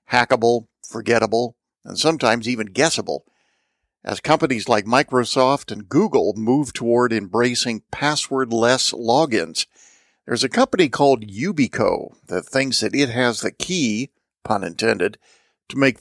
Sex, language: male, English